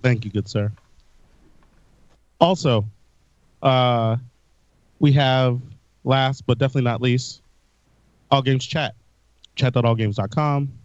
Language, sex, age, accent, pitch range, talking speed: English, male, 30-49, American, 115-150 Hz, 100 wpm